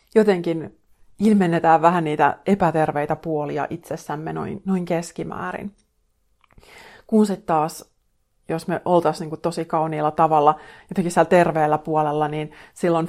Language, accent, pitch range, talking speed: Finnish, native, 155-175 Hz, 120 wpm